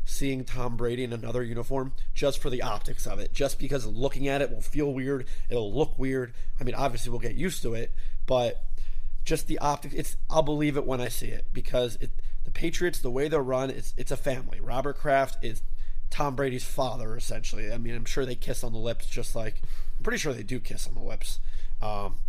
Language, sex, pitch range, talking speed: English, male, 115-140 Hz, 225 wpm